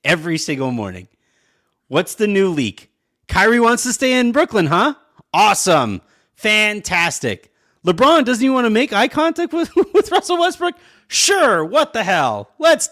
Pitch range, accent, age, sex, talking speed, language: 130-205 Hz, American, 30-49, male, 155 wpm, English